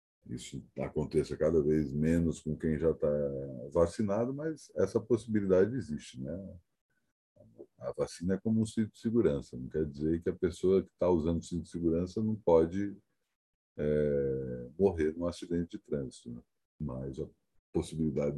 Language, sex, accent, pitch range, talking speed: Portuguese, male, Brazilian, 75-100 Hz, 155 wpm